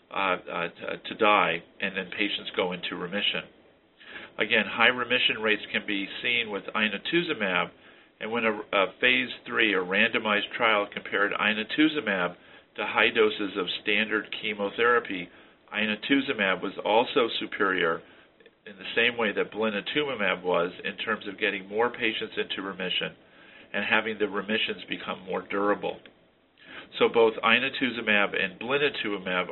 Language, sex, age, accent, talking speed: English, male, 50-69, American, 140 wpm